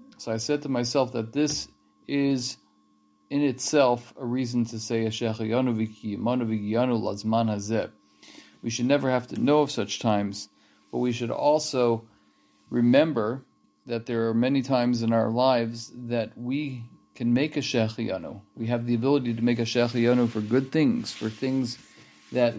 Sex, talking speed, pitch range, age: male, 165 wpm, 115-130 Hz, 40-59